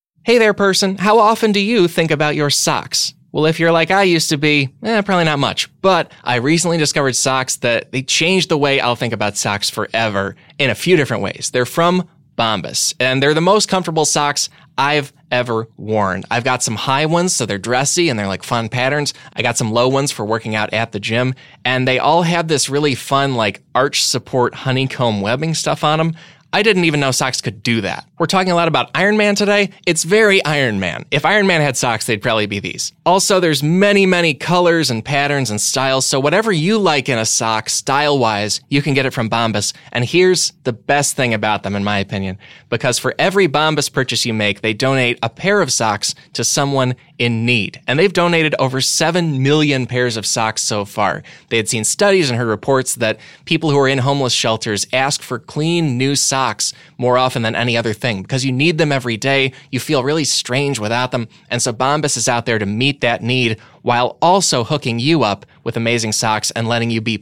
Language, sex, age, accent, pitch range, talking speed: English, male, 20-39, American, 115-160 Hz, 215 wpm